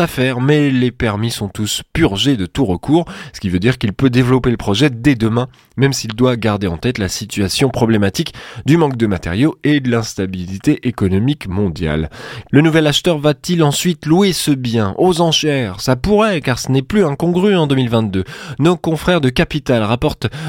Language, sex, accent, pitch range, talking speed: French, male, French, 110-160 Hz, 185 wpm